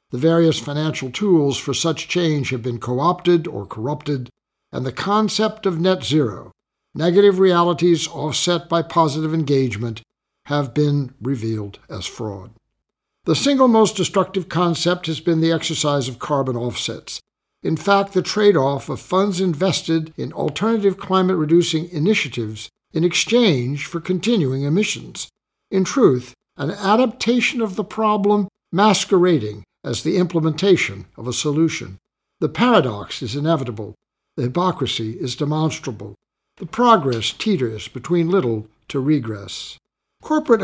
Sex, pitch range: male, 140-180 Hz